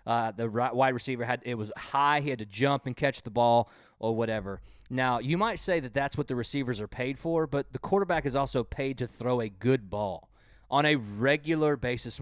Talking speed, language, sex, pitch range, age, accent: 220 wpm, English, male, 115-140 Hz, 20-39, American